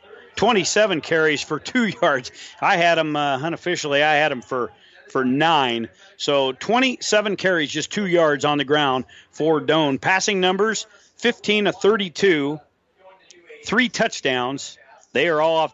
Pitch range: 140-185 Hz